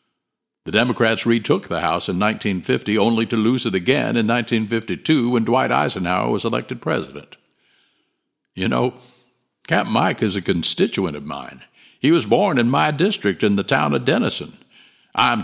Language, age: English, 60-79